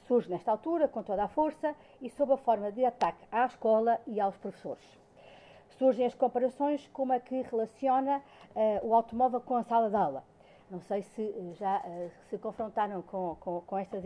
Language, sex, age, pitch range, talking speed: Portuguese, female, 50-69, 195-260 Hz, 180 wpm